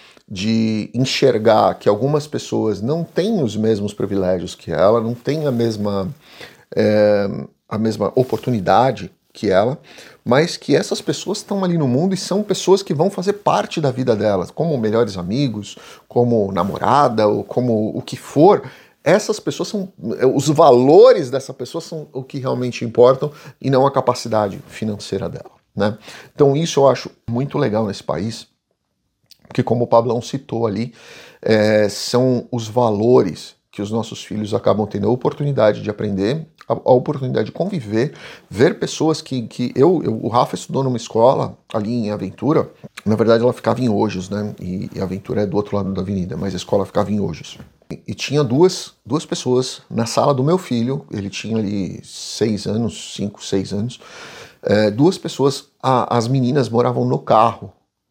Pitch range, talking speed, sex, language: 105-140 Hz, 170 wpm, male, Portuguese